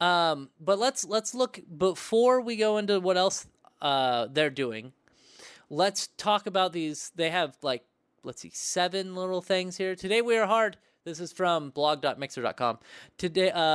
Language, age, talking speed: English, 20-39, 175 wpm